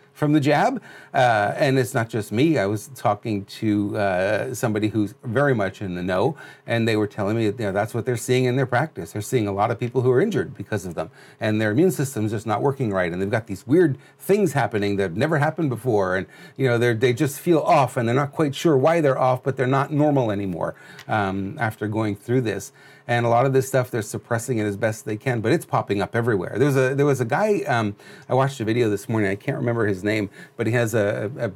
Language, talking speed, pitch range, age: English, 260 wpm, 110-140 Hz, 40-59